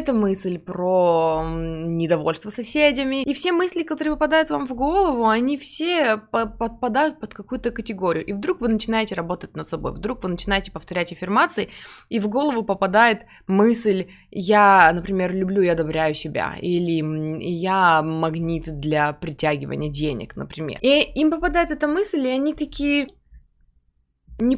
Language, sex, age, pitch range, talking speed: Russian, female, 20-39, 180-255 Hz, 140 wpm